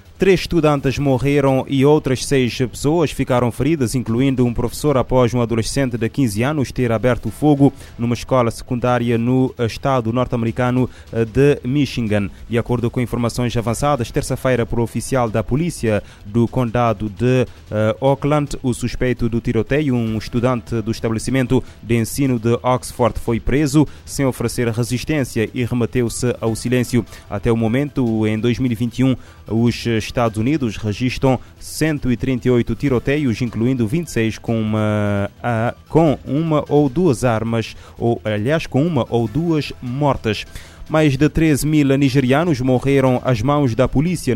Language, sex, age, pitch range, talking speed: Portuguese, male, 20-39, 115-130 Hz, 135 wpm